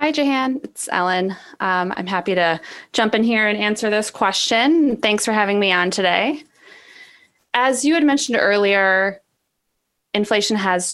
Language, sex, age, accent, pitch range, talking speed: English, female, 20-39, American, 170-230 Hz, 155 wpm